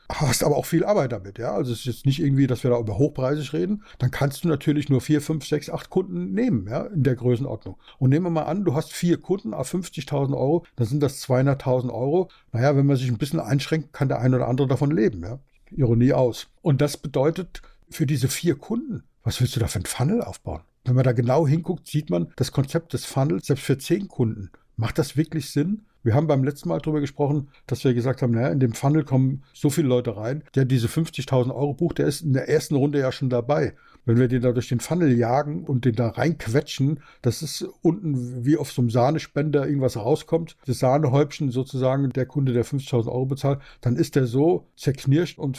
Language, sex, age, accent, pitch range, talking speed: German, male, 60-79, German, 125-155 Hz, 230 wpm